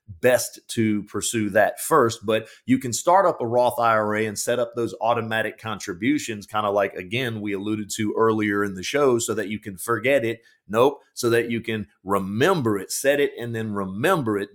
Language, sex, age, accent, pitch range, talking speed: English, male, 30-49, American, 110-140 Hz, 200 wpm